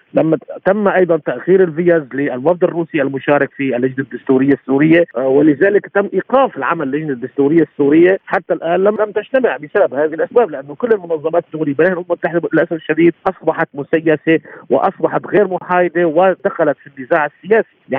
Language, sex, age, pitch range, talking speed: Arabic, male, 50-69, 145-180 Hz, 135 wpm